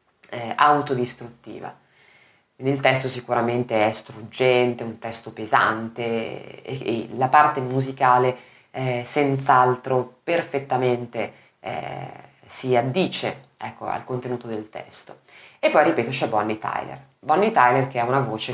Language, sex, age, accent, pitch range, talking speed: Italian, female, 20-39, native, 120-145 Hz, 125 wpm